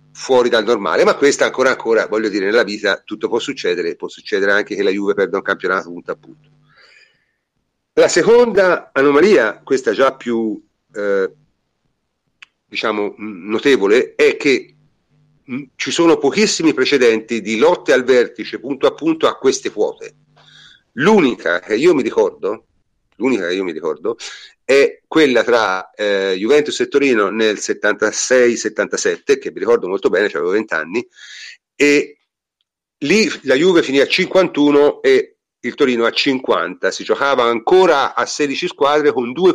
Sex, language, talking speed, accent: male, Italian, 155 wpm, native